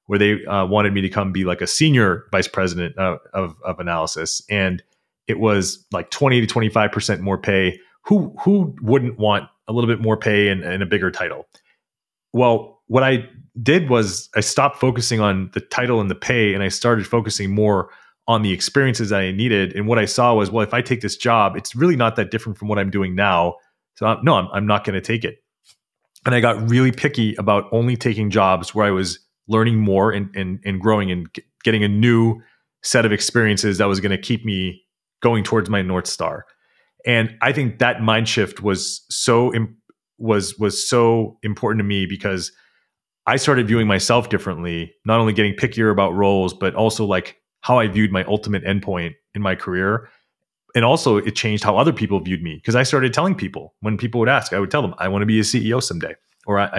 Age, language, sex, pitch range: 30-49, English, male, 100-115 Hz